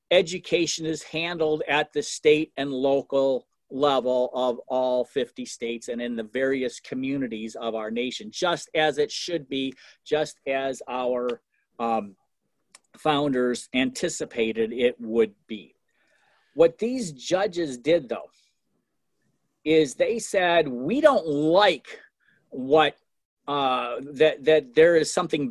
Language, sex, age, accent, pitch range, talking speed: English, male, 50-69, American, 135-190 Hz, 125 wpm